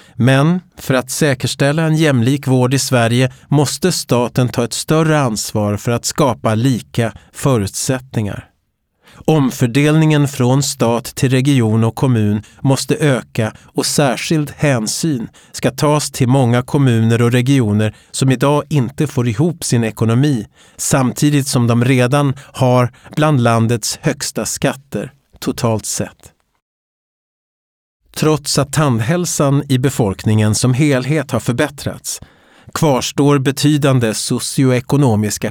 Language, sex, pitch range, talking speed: Swedish, male, 115-145 Hz, 115 wpm